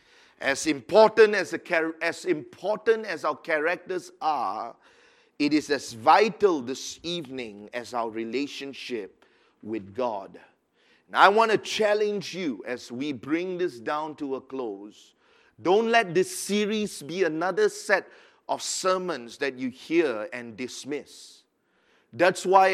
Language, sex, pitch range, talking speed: English, male, 130-190 Hz, 135 wpm